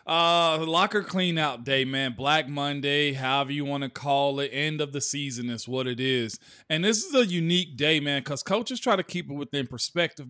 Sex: male